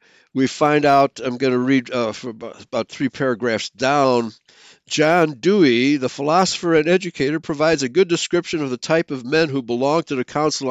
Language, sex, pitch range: English, male, 125-165 Hz